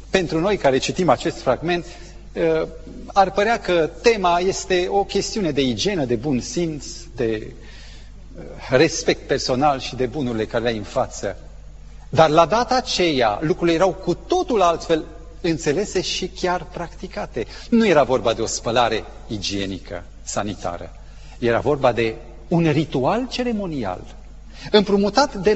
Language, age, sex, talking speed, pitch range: Romanian, 40-59, male, 135 wpm, 125-195 Hz